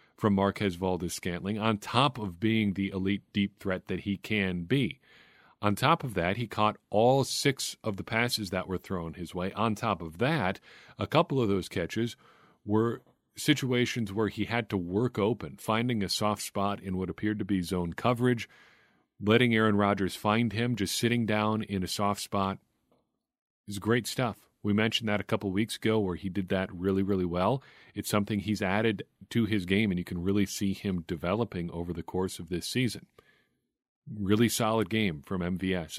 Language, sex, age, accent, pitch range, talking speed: English, male, 40-59, American, 95-110 Hz, 190 wpm